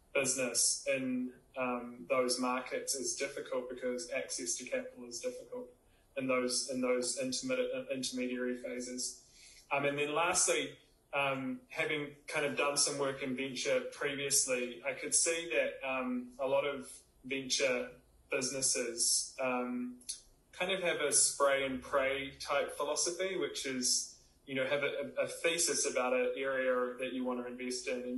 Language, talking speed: English, 150 wpm